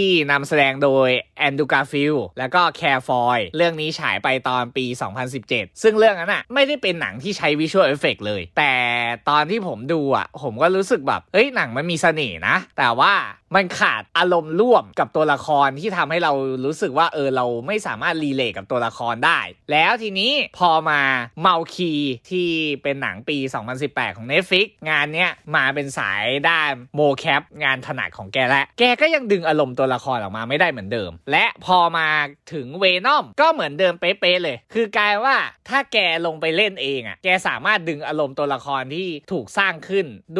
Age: 20-39